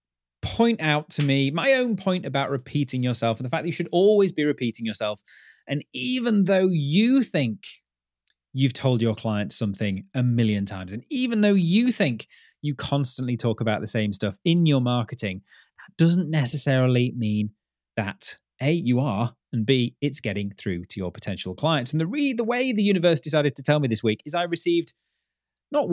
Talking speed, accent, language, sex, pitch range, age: 190 wpm, British, English, male, 115-175 Hz, 30-49